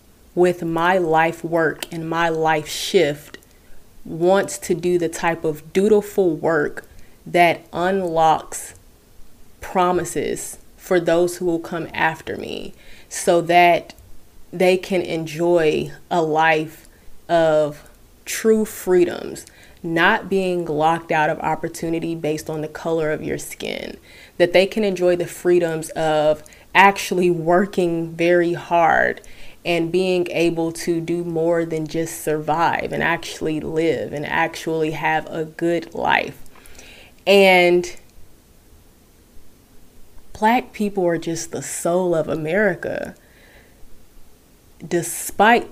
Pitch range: 160-180 Hz